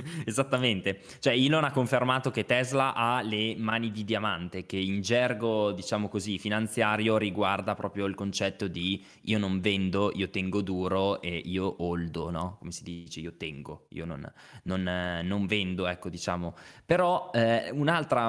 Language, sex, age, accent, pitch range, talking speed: Italian, male, 20-39, native, 95-115 Hz, 155 wpm